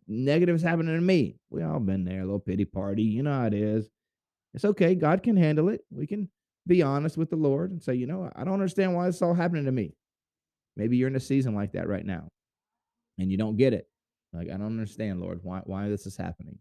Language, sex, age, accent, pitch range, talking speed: English, male, 30-49, American, 110-150 Hz, 245 wpm